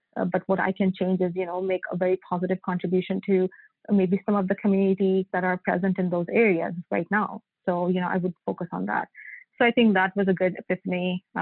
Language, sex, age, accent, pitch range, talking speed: English, female, 30-49, Indian, 180-200 Hz, 230 wpm